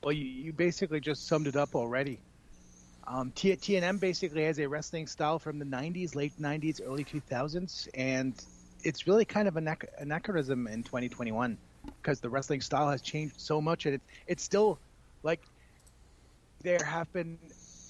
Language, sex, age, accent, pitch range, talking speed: English, male, 30-49, American, 120-160 Hz, 160 wpm